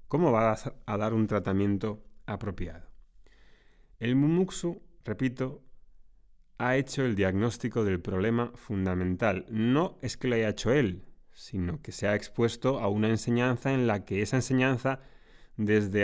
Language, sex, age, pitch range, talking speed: Spanish, male, 30-49, 100-130 Hz, 140 wpm